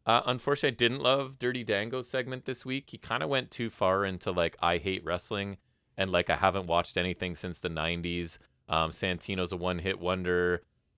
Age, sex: 30-49, male